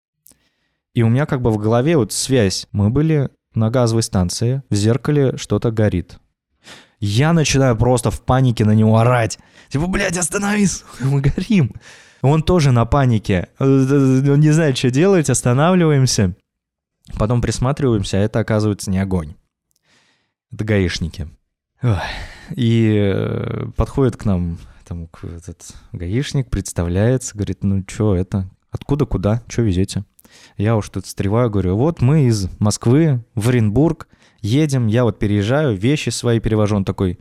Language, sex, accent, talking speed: Russian, male, native, 135 wpm